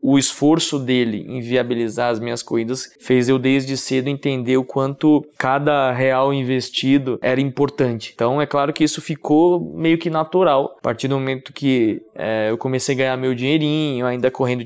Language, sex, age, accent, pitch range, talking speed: Portuguese, male, 20-39, Brazilian, 125-145 Hz, 170 wpm